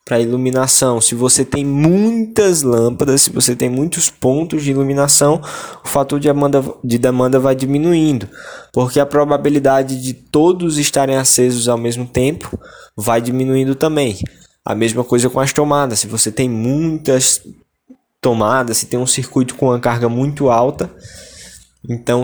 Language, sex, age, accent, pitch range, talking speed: English, male, 10-29, Brazilian, 120-140 Hz, 150 wpm